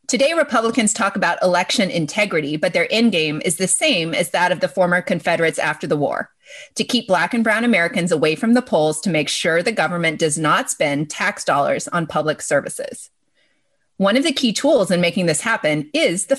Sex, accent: female, American